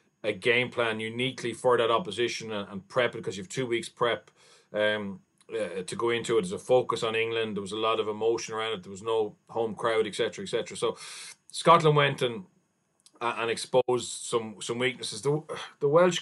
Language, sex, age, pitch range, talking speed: English, male, 30-49, 115-150 Hz, 205 wpm